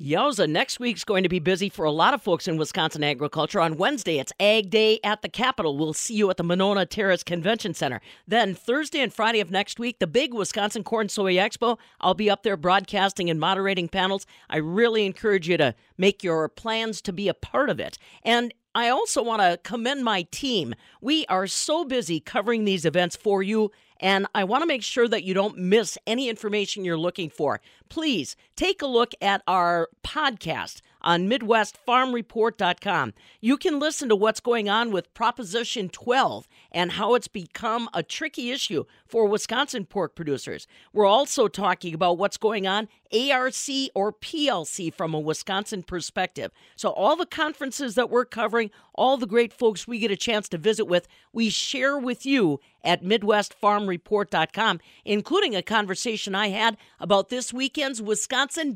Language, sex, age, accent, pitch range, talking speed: English, female, 50-69, American, 185-240 Hz, 180 wpm